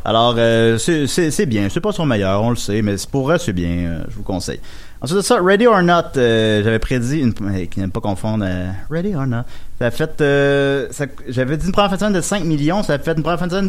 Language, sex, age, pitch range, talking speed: French, male, 30-49, 110-170 Hz, 275 wpm